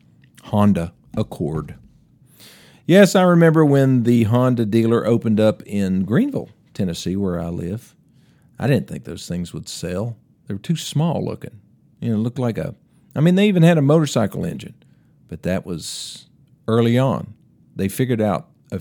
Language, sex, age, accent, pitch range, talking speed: English, male, 50-69, American, 105-140 Hz, 165 wpm